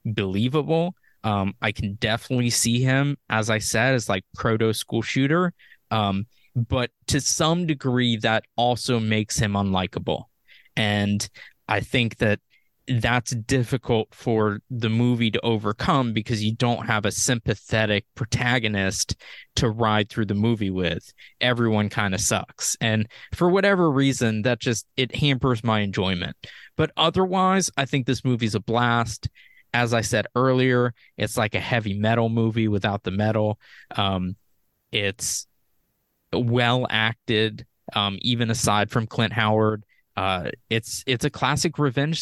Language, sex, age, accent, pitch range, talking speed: English, male, 20-39, American, 105-125 Hz, 140 wpm